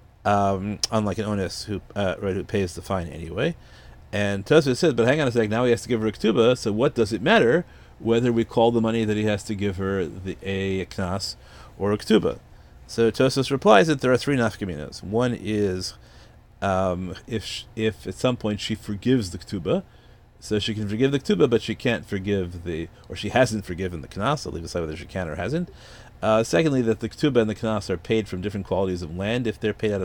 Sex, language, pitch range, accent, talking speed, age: male, English, 100-120 Hz, American, 230 wpm, 30-49